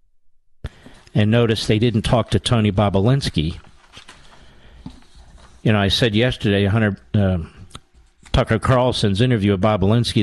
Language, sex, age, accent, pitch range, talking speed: English, male, 50-69, American, 100-125 Hz, 115 wpm